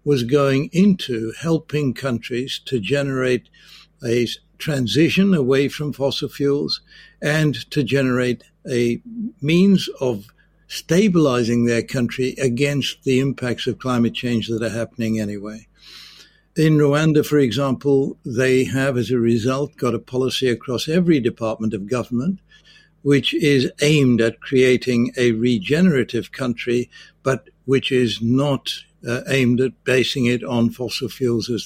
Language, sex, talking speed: English, male, 135 wpm